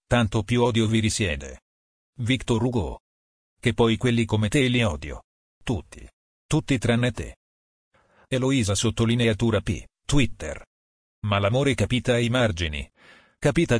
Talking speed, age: 120 wpm, 40-59